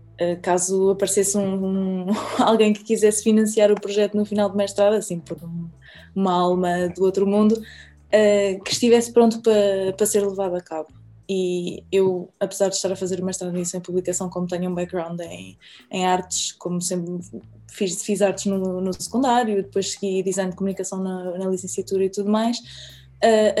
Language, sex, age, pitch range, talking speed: Portuguese, female, 20-39, 180-205 Hz, 170 wpm